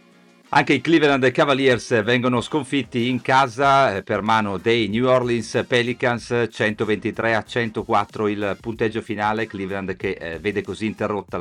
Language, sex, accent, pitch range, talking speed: Italian, male, native, 95-115 Hz, 130 wpm